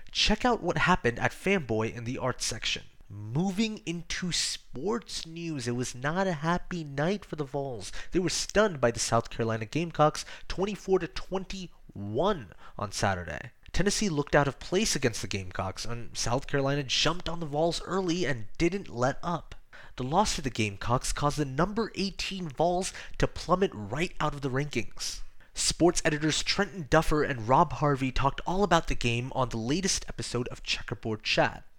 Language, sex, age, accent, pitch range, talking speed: English, male, 20-39, American, 120-175 Hz, 170 wpm